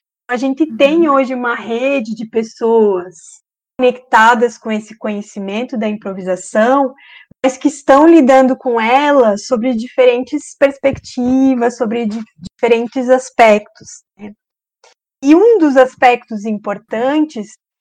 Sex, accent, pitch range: female, Brazilian, 220-275 Hz